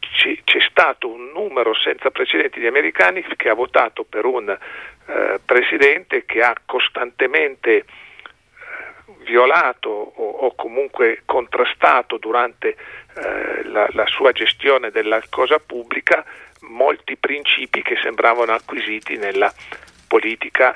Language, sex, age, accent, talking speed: Italian, male, 50-69, native, 115 wpm